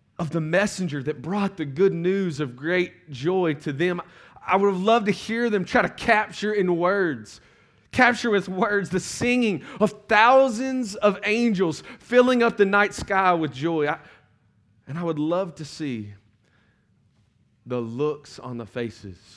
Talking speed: 160 wpm